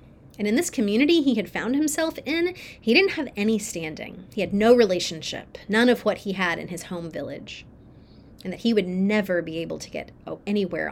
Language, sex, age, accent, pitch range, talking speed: English, female, 30-49, American, 185-255 Hz, 205 wpm